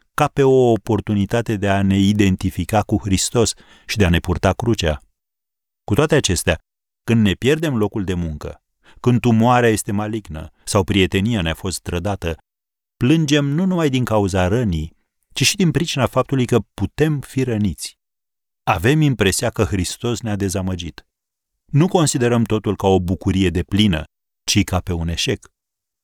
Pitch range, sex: 90-120 Hz, male